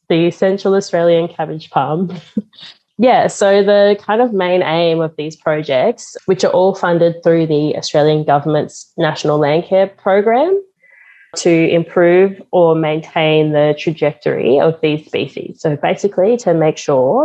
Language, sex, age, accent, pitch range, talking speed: English, female, 20-39, Australian, 155-195 Hz, 145 wpm